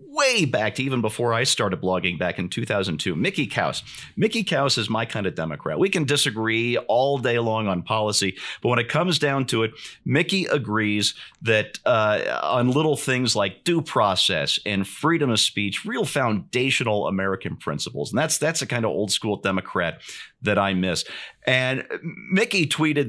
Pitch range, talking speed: 95-130 Hz, 175 wpm